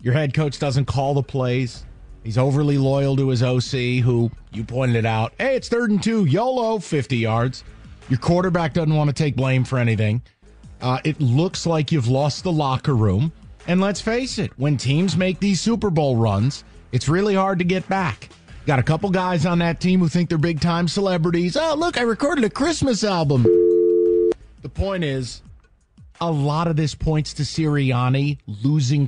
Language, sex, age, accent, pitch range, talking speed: English, male, 30-49, American, 130-195 Hz, 185 wpm